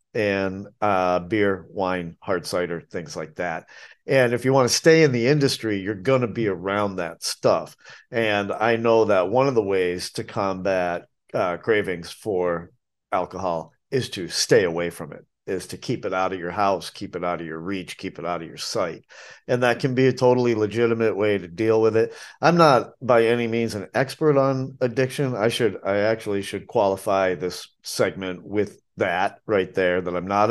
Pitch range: 90-115 Hz